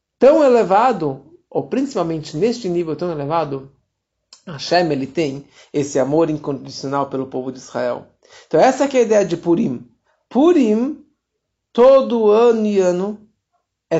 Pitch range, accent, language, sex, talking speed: 140-195 Hz, Brazilian, Portuguese, male, 135 wpm